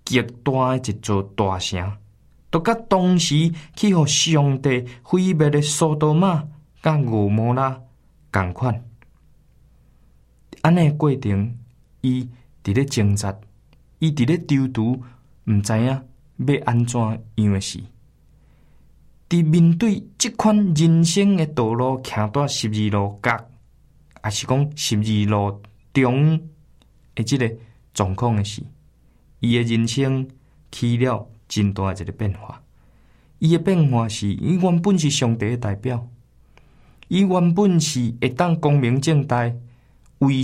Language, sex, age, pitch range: Chinese, male, 20-39, 115-155 Hz